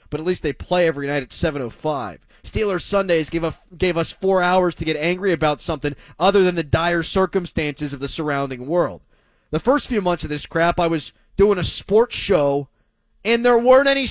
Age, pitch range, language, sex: 30-49, 150-220 Hz, English, male